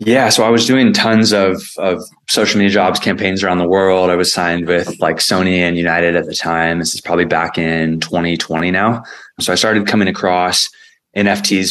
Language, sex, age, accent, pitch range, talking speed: English, male, 20-39, American, 85-95 Hz, 200 wpm